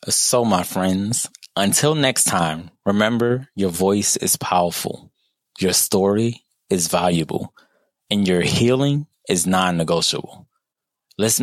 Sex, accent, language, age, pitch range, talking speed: male, American, English, 20-39, 90-110 Hz, 110 wpm